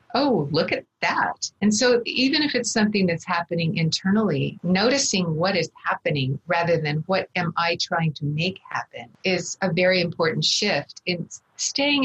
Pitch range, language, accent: 170-215 Hz, English, American